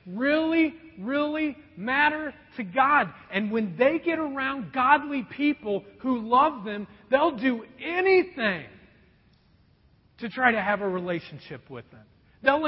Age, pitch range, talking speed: 40-59, 190-270 Hz, 130 wpm